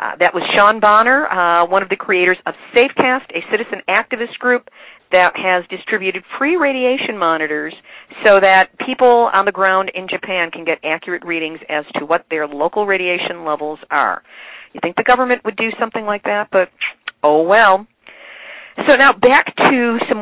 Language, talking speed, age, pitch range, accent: English, 175 wpm, 50-69, 175-220 Hz, American